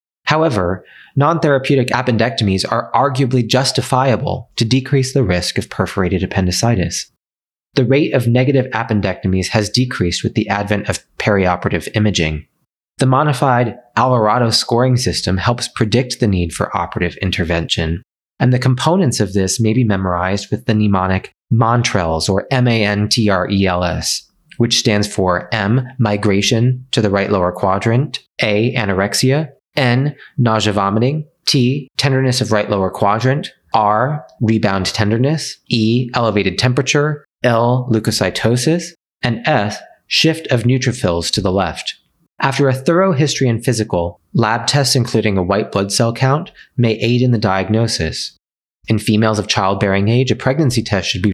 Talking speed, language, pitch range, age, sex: 140 wpm, English, 100-130 Hz, 30-49, male